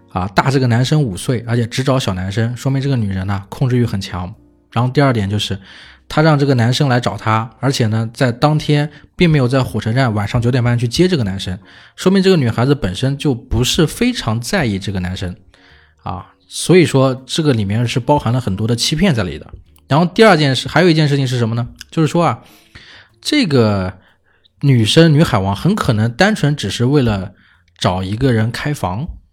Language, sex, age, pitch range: Chinese, male, 20-39, 100-145 Hz